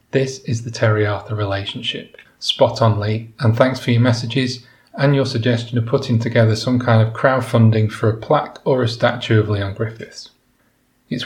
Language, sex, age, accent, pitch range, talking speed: English, male, 30-49, British, 110-135 Hz, 175 wpm